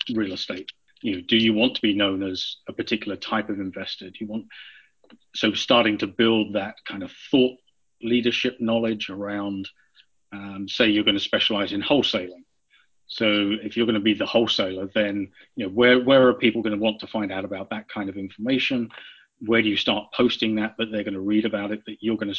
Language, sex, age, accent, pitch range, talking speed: English, male, 40-59, British, 100-115 Hz, 215 wpm